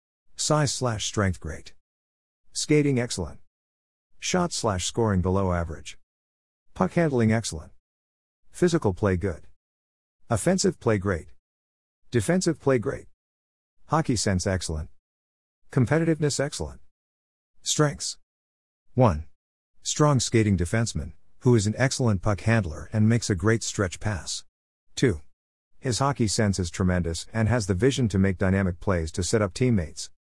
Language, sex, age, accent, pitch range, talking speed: English, male, 50-69, American, 80-120 Hz, 125 wpm